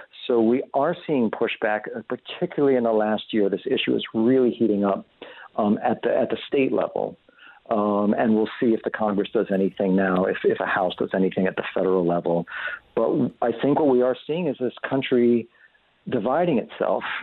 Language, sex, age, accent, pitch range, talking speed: English, male, 50-69, American, 105-130 Hz, 190 wpm